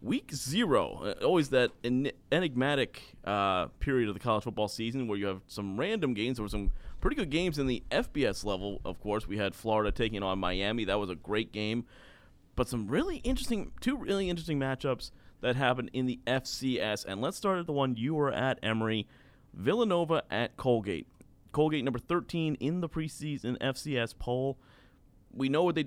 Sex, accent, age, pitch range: male, American, 30-49, 110-145 Hz